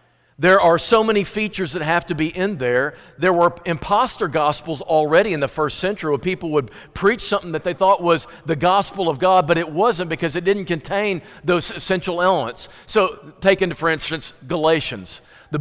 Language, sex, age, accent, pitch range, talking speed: English, male, 50-69, American, 160-205 Hz, 190 wpm